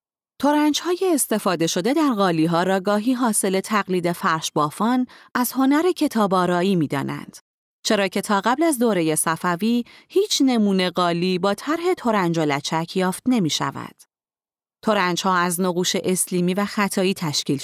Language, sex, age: Persian, female, 30-49